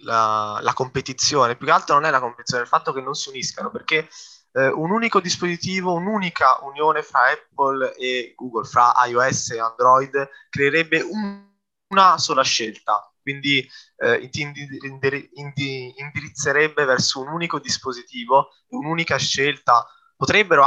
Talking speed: 150 wpm